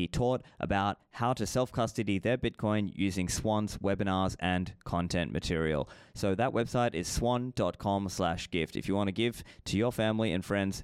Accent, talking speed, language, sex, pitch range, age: Australian, 160 wpm, English, male, 95-110 Hz, 20-39